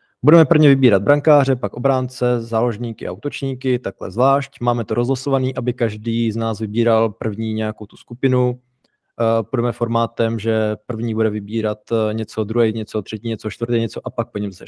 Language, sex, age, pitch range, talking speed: Czech, male, 20-39, 110-130 Hz, 170 wpm